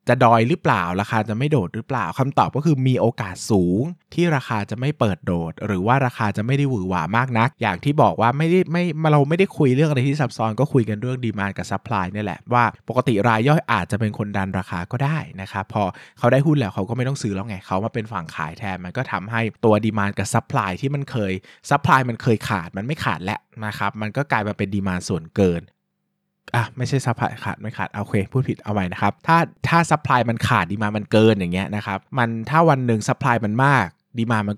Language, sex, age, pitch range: Thai, male, 20-39, 100-135 Hz